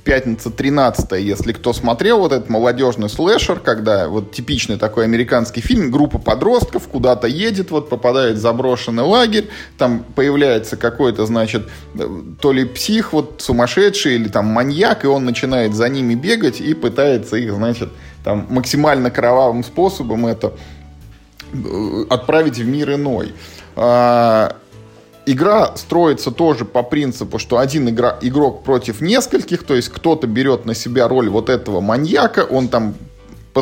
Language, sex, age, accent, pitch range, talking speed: Russian, male, 20-39, native, 115-150 Hz, 140 wpm